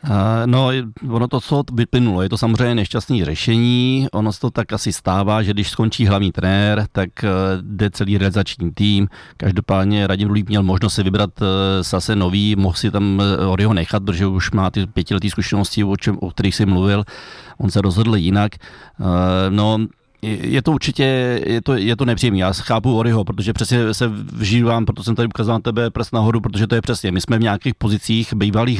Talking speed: 190 wpm